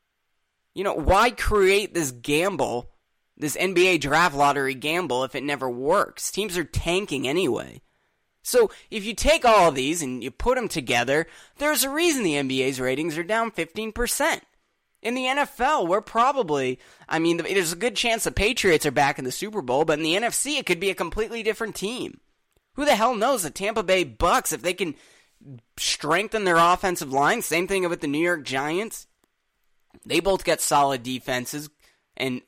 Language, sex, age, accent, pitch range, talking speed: English, male, 20-39, American, 140-220 Hz, 180 wpm